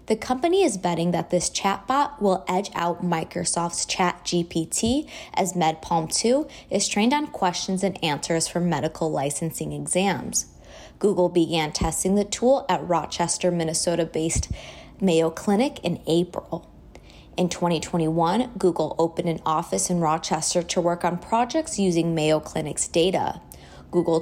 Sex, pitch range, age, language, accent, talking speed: female, 160-185 Hz, 20-39, English, American, 135 wpm